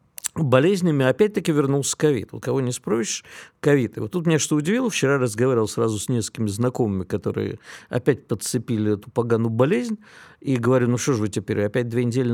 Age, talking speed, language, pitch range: 50-69, 180 wpm, Russian, 115-155 Hz